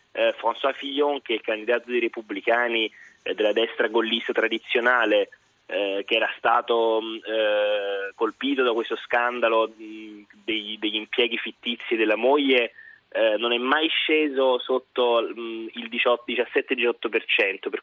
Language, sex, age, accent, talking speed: Italian, male, 20-39, native, 130 wpm